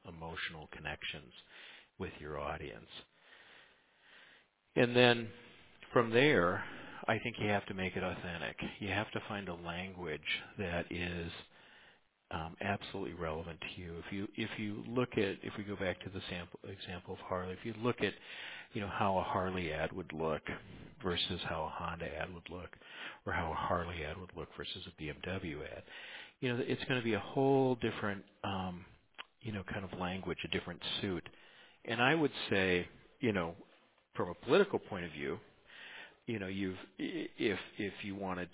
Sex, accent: male, American